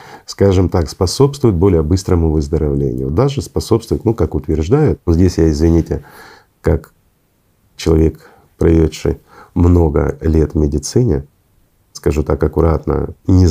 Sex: male